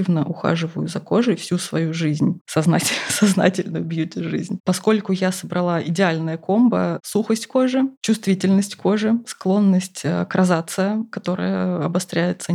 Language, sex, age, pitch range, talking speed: Russian, female, 20-39, 170-205 Hz, 110 wpm